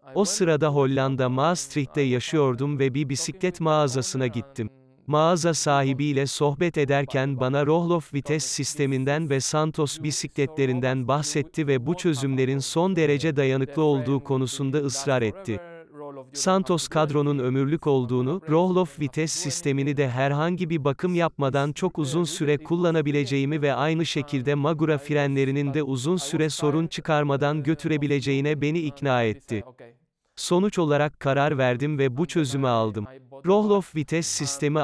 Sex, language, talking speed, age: male, Turkish, 125 wpm, 40-59